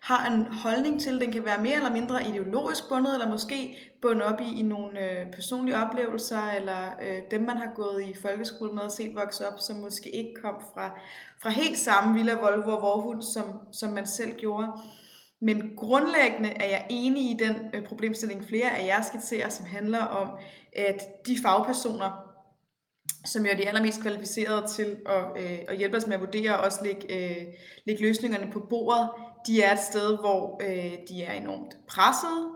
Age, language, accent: 20-39, Danish, native